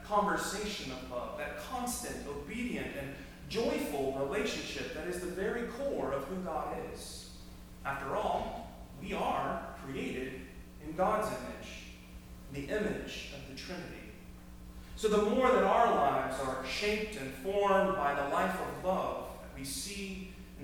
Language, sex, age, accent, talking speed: English, male, 40-59, American, 145 wpm